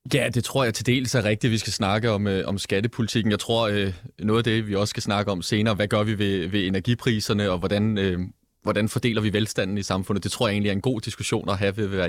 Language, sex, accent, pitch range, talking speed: Danish, male, native, 95-120 Hz, 275 wpm